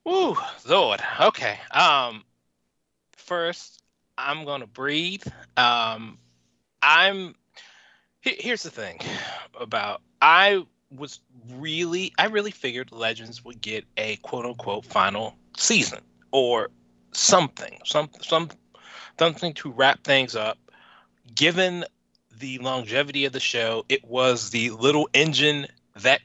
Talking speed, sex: 115 wpm, male